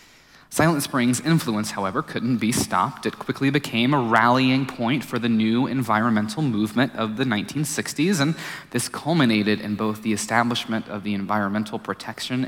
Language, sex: English, male